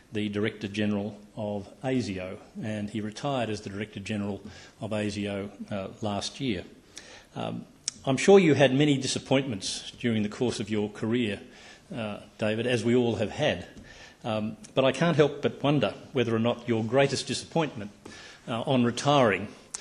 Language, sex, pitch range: English, male, 110-135 Hz